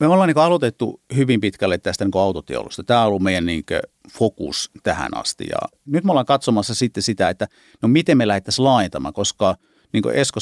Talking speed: 195 wpm